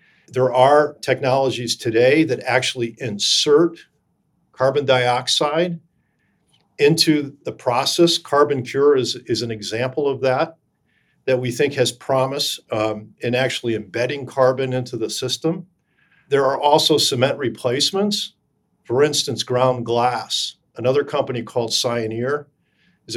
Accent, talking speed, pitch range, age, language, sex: American, 120 wpm, 120-160 Hz, 50-69, English, male